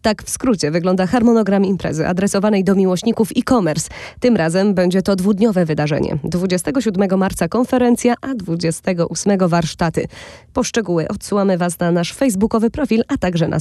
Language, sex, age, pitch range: Polish, female, 20-39, 180-235 Hz